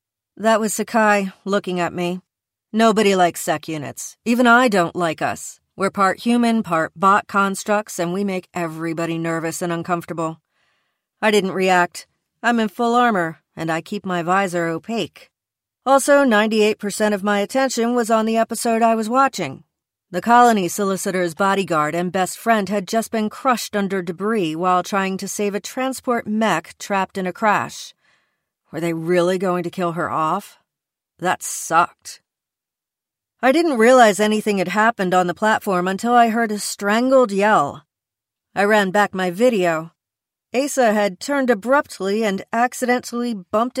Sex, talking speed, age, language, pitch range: female, 155 wpm, 40-59, English, 180-230 Hz